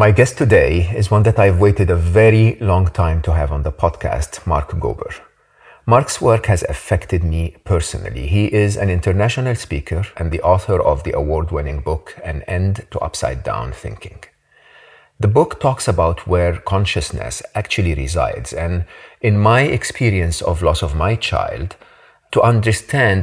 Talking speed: 160 wpm